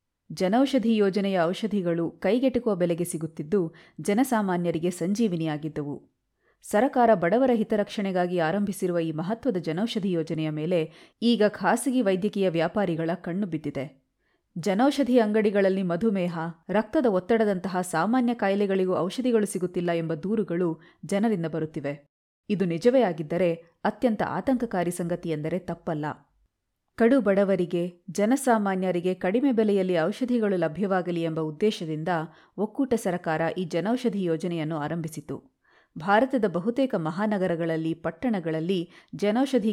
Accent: native